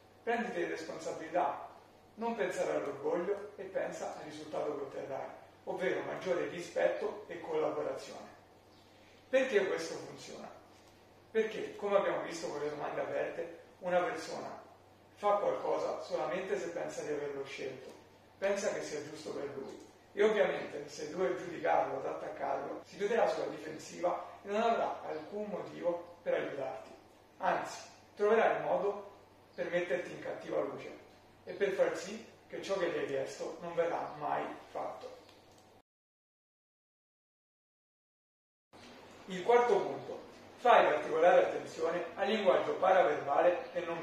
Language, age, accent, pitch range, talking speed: Italian, 40-59, native, 170-235 Hz, 130 wpm